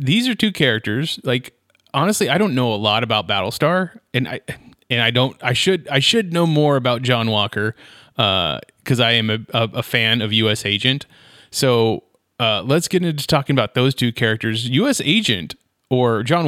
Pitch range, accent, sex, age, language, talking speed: 110-145 Hz, American, male, 30-49, English, 185 wpm